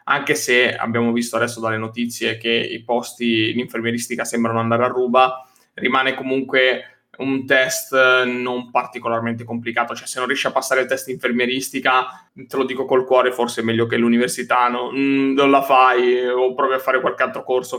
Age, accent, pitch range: 20-39, native, 115-130 Hz